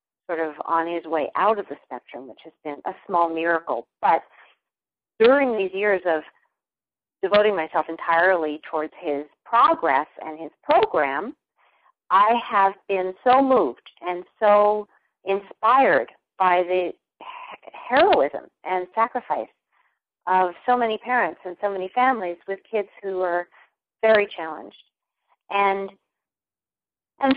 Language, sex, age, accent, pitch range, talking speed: English, female, 40-59, American, 165-225 Hz, 125 wpm